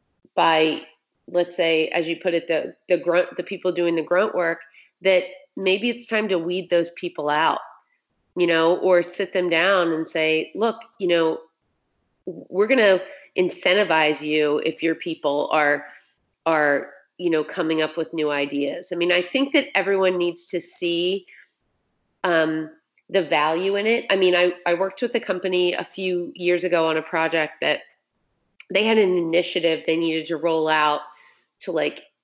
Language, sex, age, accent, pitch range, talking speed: English, female, 30-49, American, 160-185 Hz, 175 wpm